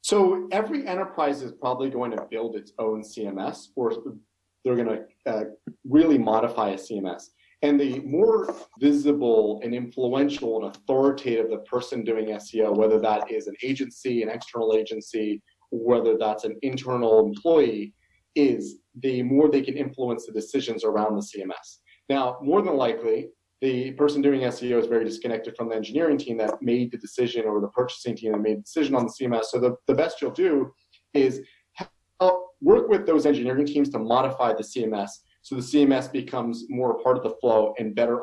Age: 30-49